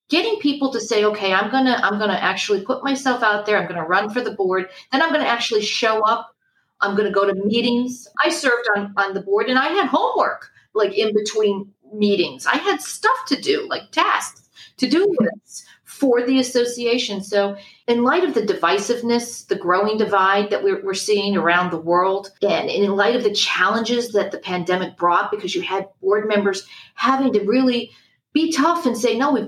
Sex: female